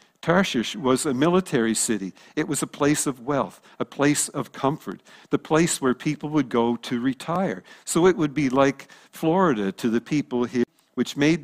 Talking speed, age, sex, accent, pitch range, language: 185 wpm, 50-69, male, American, 125-155 Hz, English